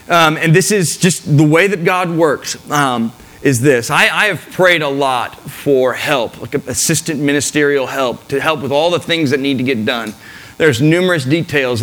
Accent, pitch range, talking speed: American, 130-165 Hz, 200 wpm